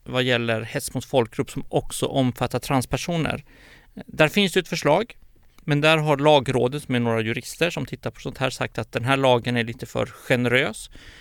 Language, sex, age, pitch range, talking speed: Swedish, male, 30-49, 120-145 Hz, 180 wpm